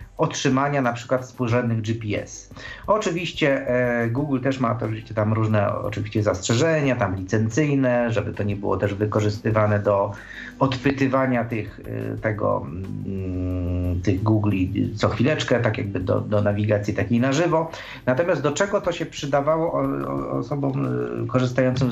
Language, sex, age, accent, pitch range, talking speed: Polish, male, 40-59, native, 105-145 Hz, 135 wpm